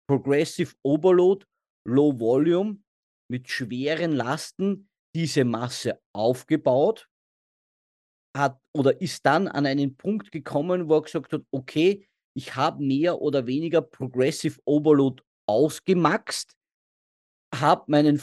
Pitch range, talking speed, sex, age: 145-190 Hz, 110 wpm, male, 40-59